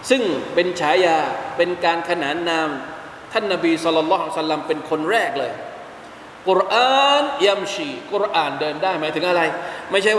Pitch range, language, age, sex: 175-270 Hz, Thai, 20-39, male